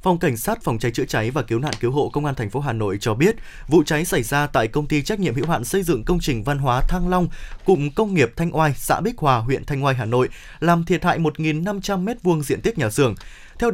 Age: 20-39